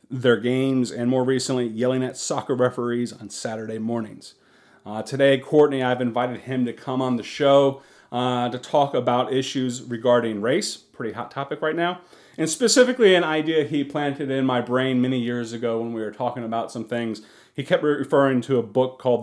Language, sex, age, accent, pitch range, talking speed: English, male, 40-59, American, 115-135 Hz, 190 wpm